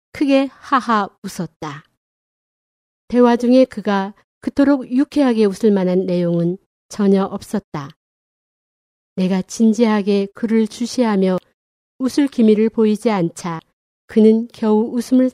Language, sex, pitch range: Korean, female, 185-235 Hz